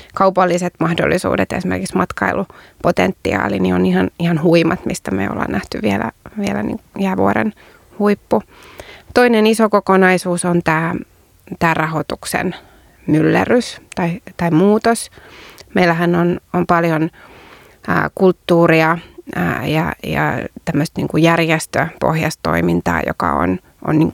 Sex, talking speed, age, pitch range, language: female, 105 wpm, 30-49, 160-185 Hz, Finnish